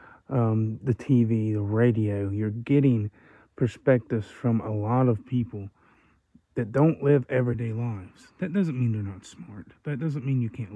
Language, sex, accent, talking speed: English, male, American, 160 wpm